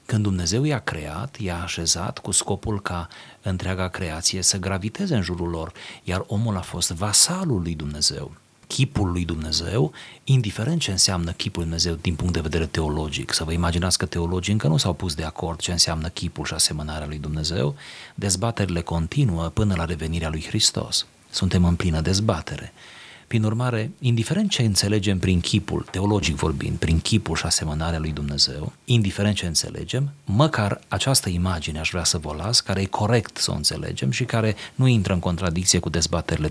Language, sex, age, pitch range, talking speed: Romanian, male, 40-59, 85-115 Hz, 175 wpm